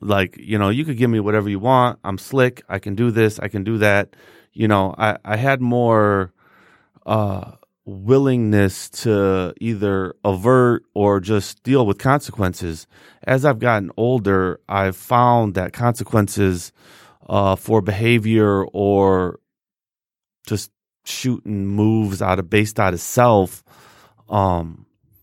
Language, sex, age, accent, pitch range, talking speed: English, male, 30-49, American, 95-110 Hz, 140 wpm